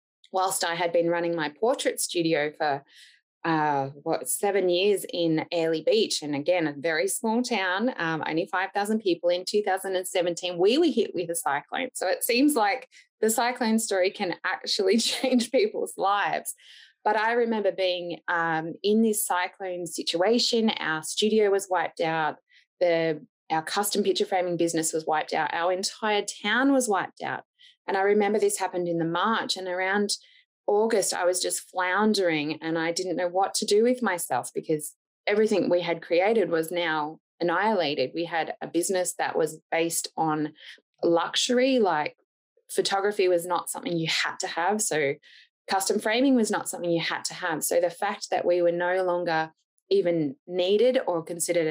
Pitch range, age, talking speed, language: 165-215 Hz, 20-39, 170 wpm, English